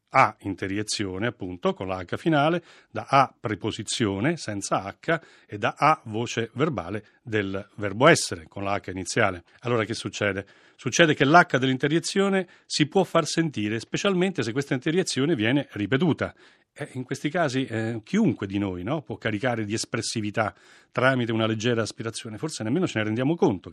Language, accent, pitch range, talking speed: Italian, native, 100-135 Hz, 160 wpm